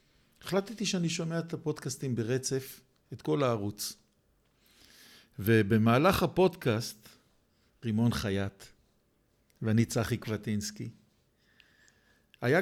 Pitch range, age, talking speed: 105-135 Hz, 50-69, 80 wpm